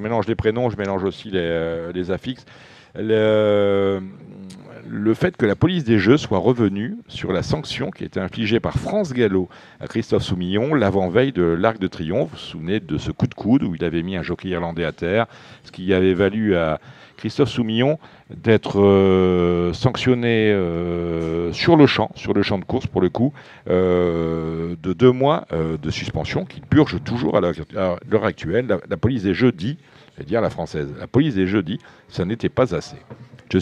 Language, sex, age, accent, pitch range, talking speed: French, male, 50-69, French, 95-125 Hz, 195 wpm